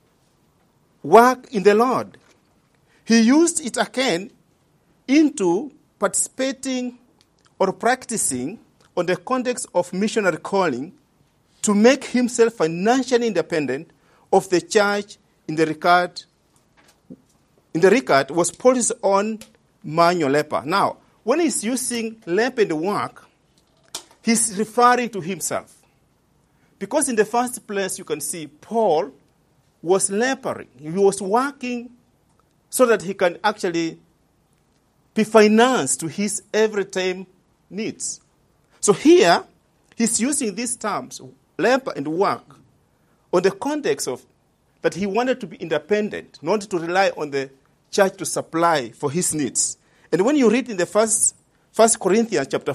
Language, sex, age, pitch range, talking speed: English, male, 50-69, 175-240 Hz, 130 wpm